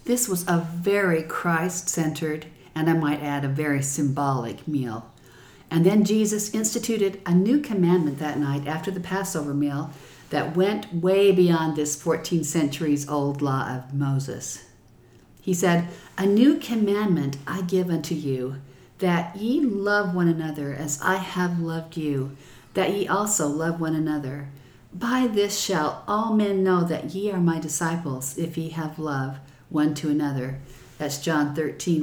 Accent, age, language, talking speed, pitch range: American, 50-69, English, 155 wpm, 145-180 Hz